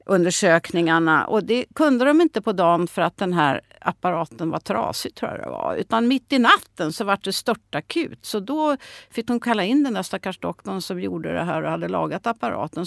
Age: 50-69